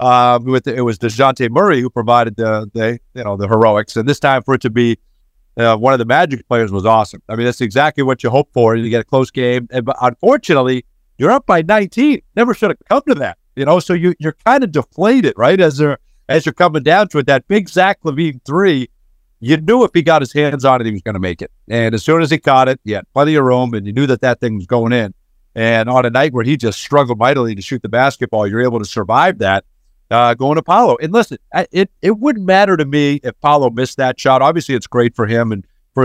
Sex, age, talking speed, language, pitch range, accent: male, 50-69, 260 wpm, English, 115-155 Hz, American